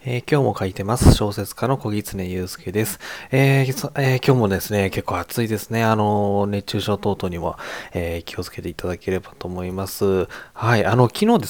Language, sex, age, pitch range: Japanese, male, 20-39, 95-115 Hz